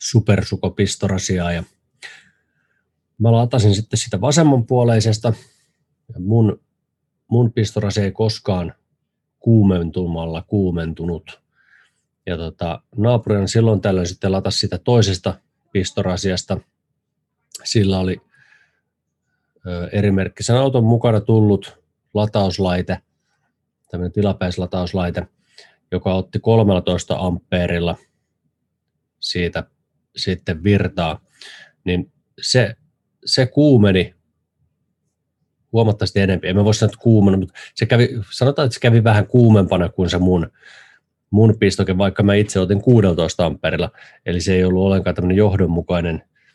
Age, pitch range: 30-49, 90-110 Hz